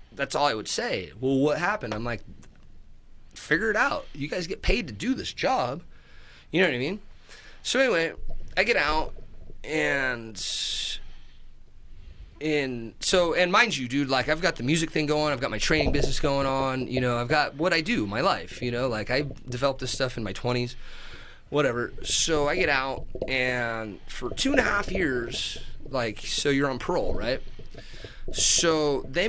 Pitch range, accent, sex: 115-150 Hz, American, male